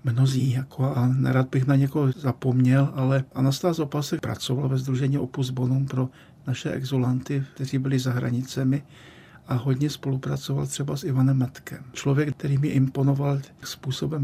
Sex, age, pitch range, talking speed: male, 50-69, 130-140 Hz, 150 wpm